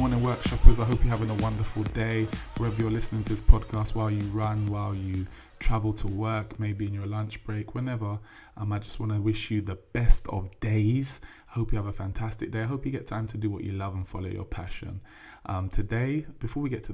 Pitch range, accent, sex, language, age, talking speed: 95-110 Hz, British, male, English, 20-39, 235 wpm